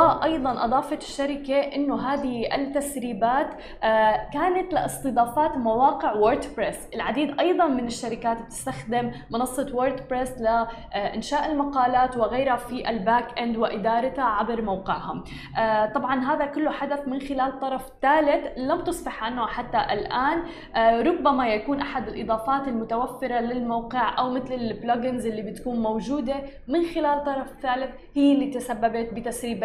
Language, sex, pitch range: Arabic, female, 230-275 Hz